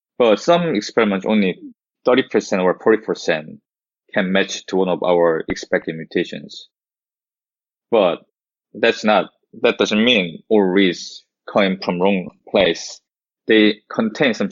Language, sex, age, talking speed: English, male, 20-39, 125 wpm